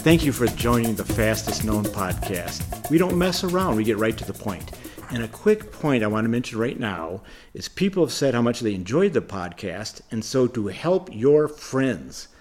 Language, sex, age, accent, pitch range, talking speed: English, male, 50-69, American, 105-140 Hz, 215 wpm